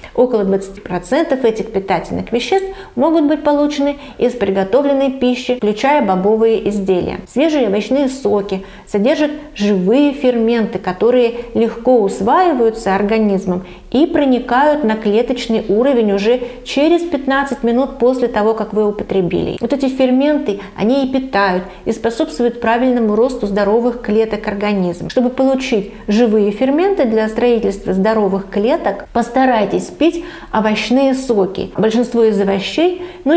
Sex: female